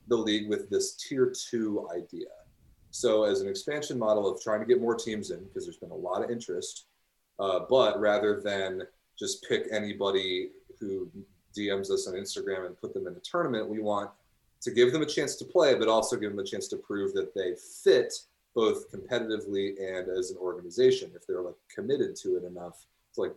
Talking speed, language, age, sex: 205 wpm, English, 30-49, male